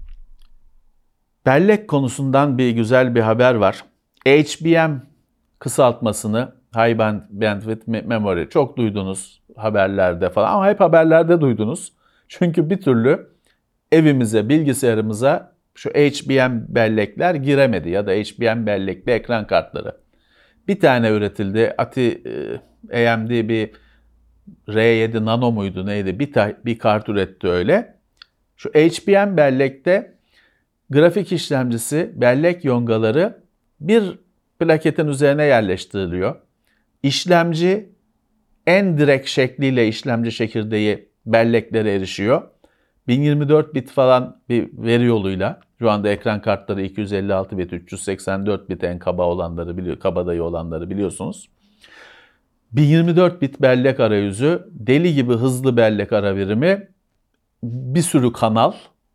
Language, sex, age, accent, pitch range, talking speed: Turkish, male, 50-69, native, 105-145 Hz, 105 wpm